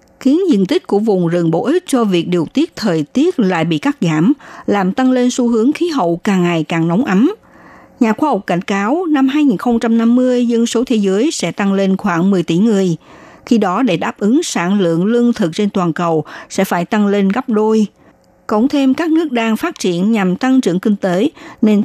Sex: female